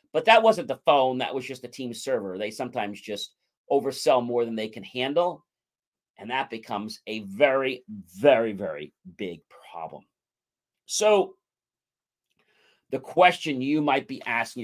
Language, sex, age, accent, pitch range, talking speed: English, male, 40-59, American, 115-165 Hz, 150 wpm